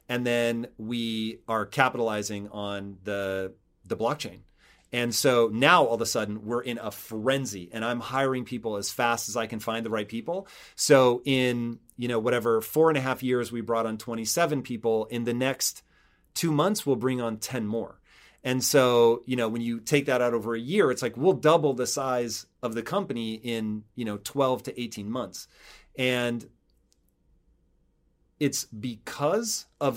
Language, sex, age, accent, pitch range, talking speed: English, male, 30-49, American, 110-135 Hz, 180 wpm